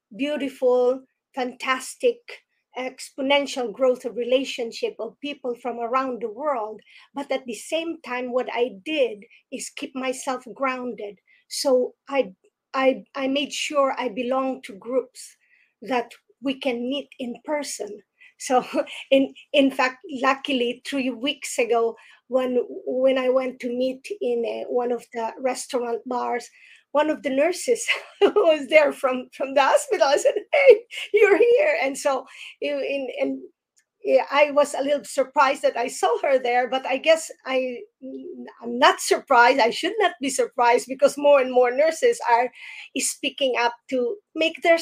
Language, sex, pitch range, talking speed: English, female, 245-295 Hz, 155 wpm